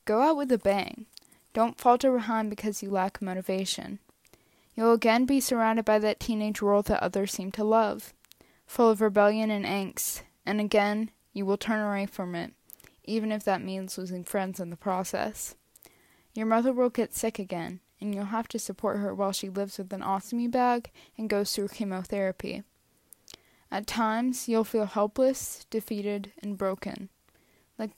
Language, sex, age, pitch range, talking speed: English, female, 10-29, 195-230 Hz, 170 wpm